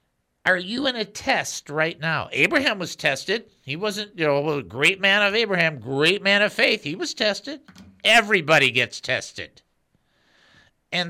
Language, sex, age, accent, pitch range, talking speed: English, male, 50-69, American, 160-230 Hz, 160 wpm